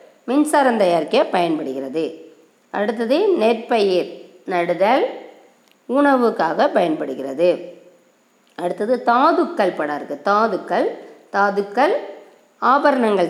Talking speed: 65 wpm